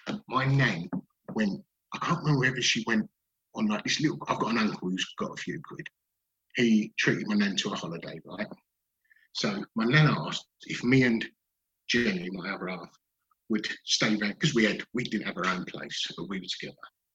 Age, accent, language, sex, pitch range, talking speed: 50-69, British, English, male, 120-170 Hz, 200 wpm